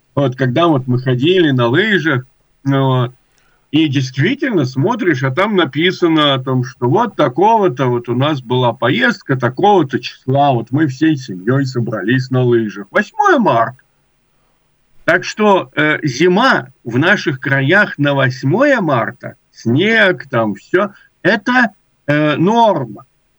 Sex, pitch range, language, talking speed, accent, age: male, 130-205 Hz, Russian, 130 wpm, native, 50-69